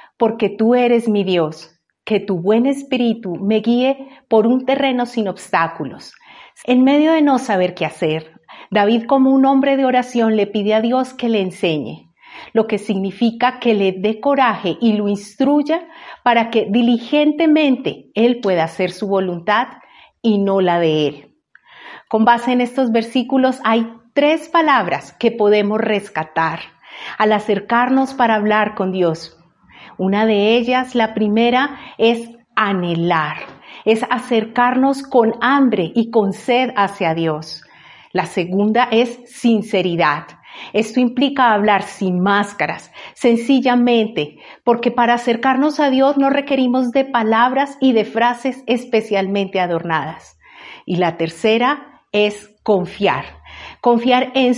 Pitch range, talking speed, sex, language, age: 195-250 Hz, 135 wpm, female, Spanish, 40-59